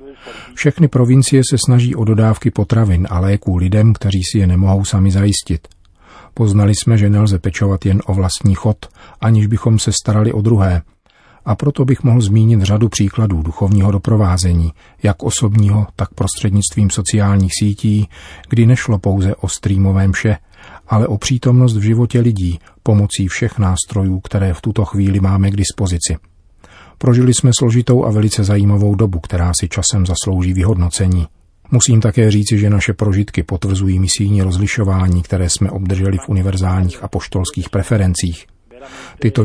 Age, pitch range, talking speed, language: 40-59, 95-110 Hz, 150 wpm, Czech